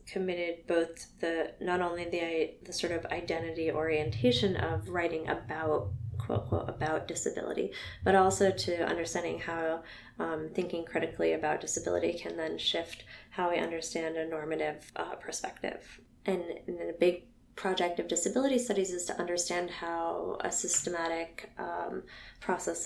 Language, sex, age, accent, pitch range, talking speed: English, female, 20-39, American, 160-175 Hz, 140 wpm